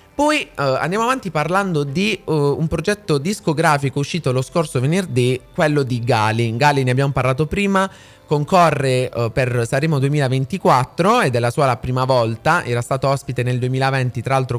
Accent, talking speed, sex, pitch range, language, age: native, 170 wpm, male, 125-160 Hz, Italian, 20-39